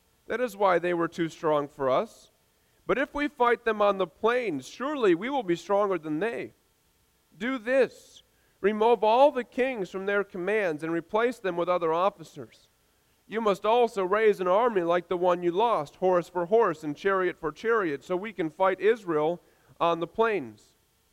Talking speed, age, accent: 185 wpm, 40-59, American